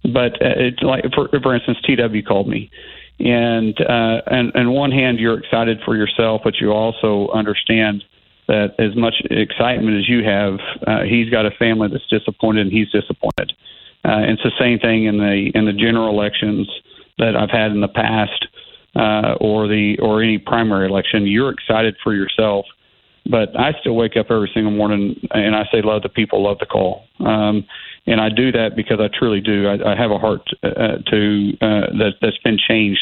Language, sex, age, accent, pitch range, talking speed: English, male, 40-59, American, 105-115 Hz, 190 wpm